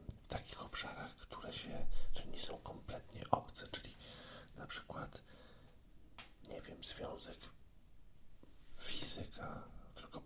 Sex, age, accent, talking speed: male, 50-69, native, 75 wpm